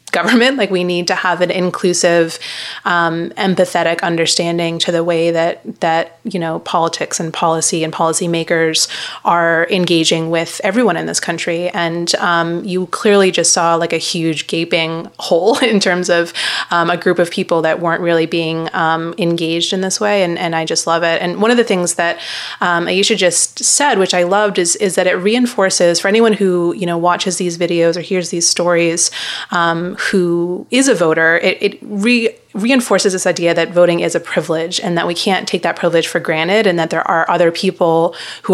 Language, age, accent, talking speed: English, 30-49, American, 200 wpm